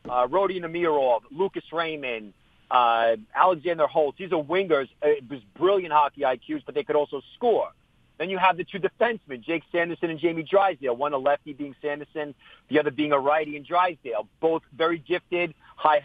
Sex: male